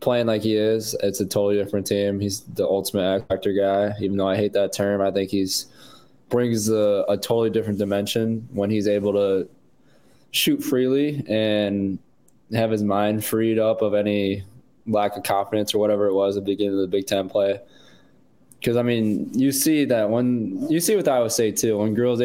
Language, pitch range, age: English, 100-115 Hz, 20-39